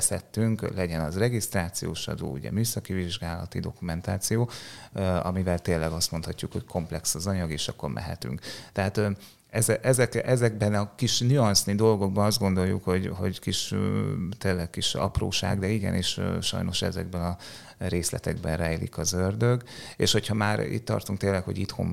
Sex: male